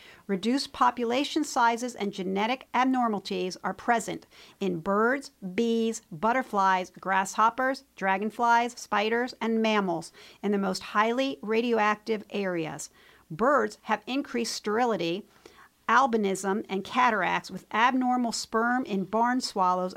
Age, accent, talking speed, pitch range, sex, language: 50-69, American, 110 wpm, 190-245 Hz, female, English